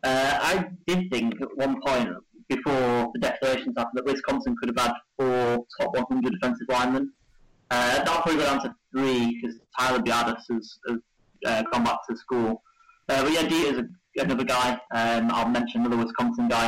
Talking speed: 180 wpm